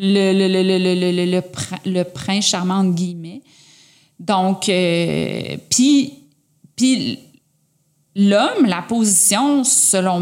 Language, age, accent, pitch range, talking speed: French, 30-49, Canadian, 170-235 Hz, 115 wpm